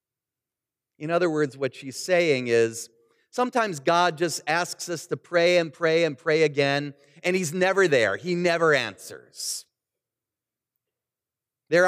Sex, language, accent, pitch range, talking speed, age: male, English, American, 150-225 Hz, 135 wpm, 40-59